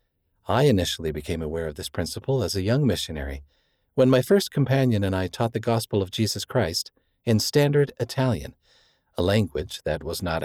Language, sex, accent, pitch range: English, male, American, 90-125 Hz